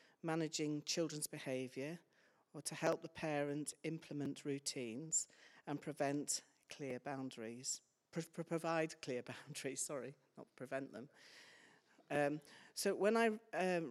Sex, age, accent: female, 50-69, British